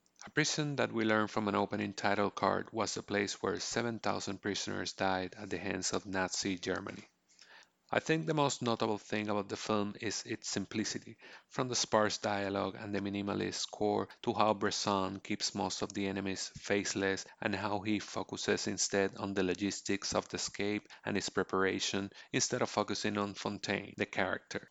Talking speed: 175 wpm